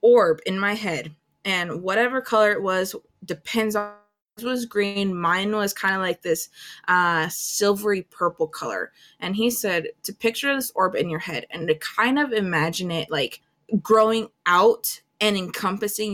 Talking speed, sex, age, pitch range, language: 165 wpm, female, 20-39, 175-220 Hz, English